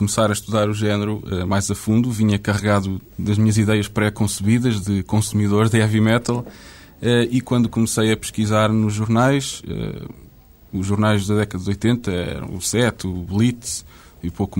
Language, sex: Portuguese, male